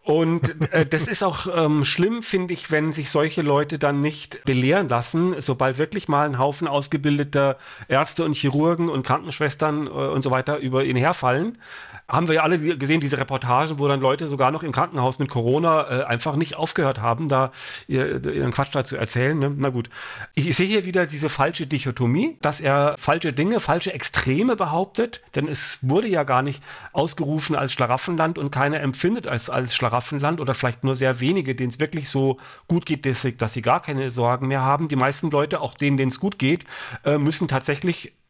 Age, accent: 40-59, German